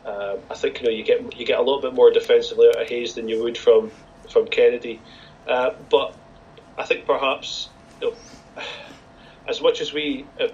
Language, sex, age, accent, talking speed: English, male, 30-49, British, 200 wpm